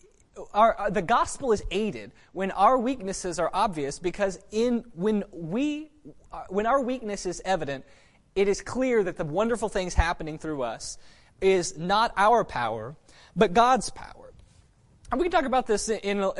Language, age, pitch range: English, 20-39, 185-250 Hz